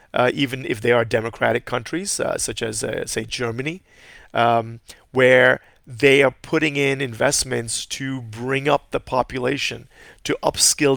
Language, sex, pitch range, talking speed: English, male, 120-140 Hz, 150 wpm